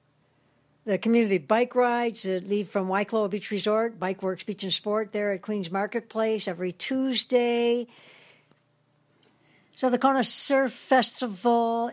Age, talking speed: 60-79, 130 wpm